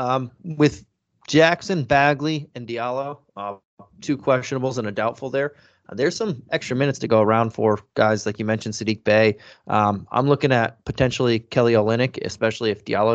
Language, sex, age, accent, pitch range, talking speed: English, male, 20-39, American, 110-130 Hz, 175 wpm